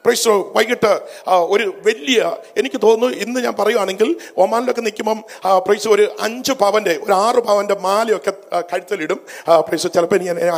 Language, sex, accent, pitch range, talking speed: Malayalam, male, native, 205-255 Hz, 135 wpm